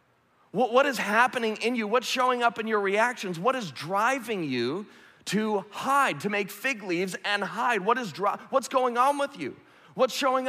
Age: 30-49